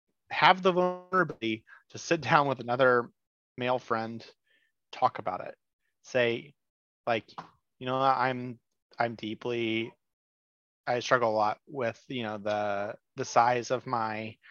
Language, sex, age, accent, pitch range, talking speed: English, male, 30-49, American, 110-140 Hz, 130 wpm